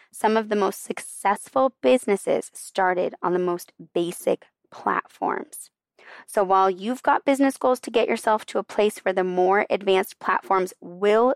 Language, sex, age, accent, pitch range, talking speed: English, female, 20-39, American, 200-270 Hz, 160 wpm